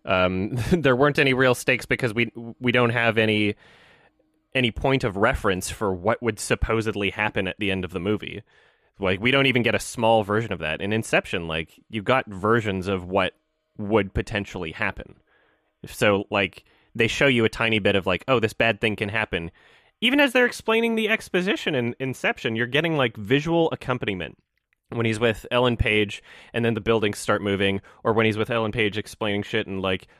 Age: 20-39